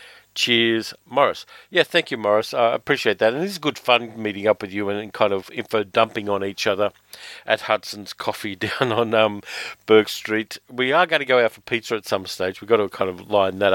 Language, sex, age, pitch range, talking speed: English, male, 50-69, 100-120 Hz, 225 wpm